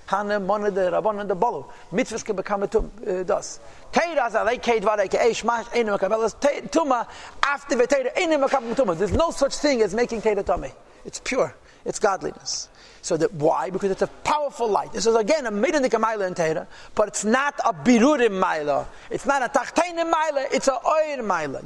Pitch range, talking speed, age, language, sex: 195-260 Hz, 120 wpm, 40-59, English, male